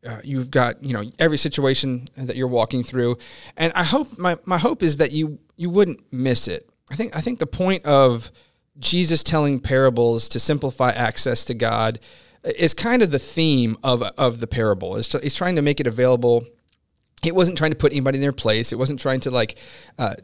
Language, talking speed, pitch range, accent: English, 210 wpm, 120-150 Hz, American